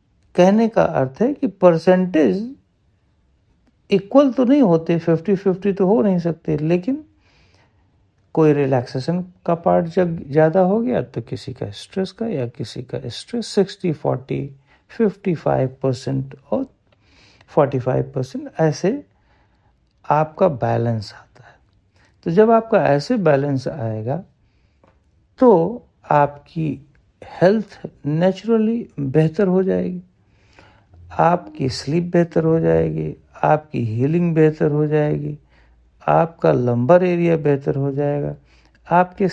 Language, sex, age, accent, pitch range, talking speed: Hindi, male, 60-79, native, 115-185 Hz, 115 wpm